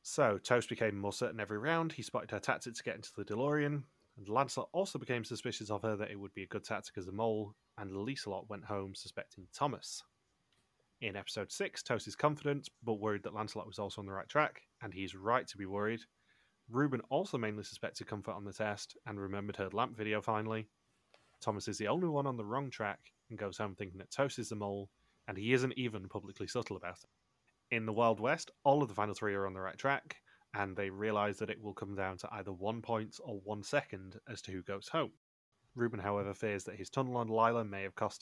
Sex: male